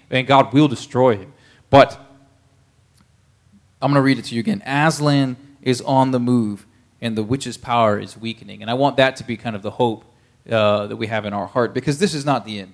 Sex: male